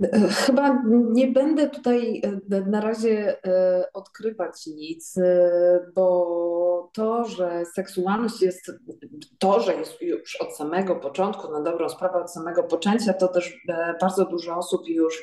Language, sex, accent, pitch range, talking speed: Polish, female, native, 180-225 Hz, 125 wpm